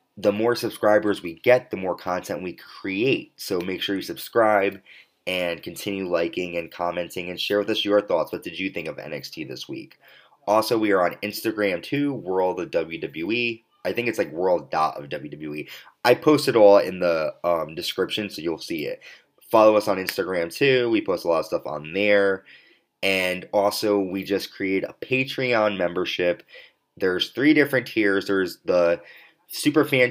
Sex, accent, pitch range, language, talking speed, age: male, American, 90-110 Hz, English, 175 wpm, 20-39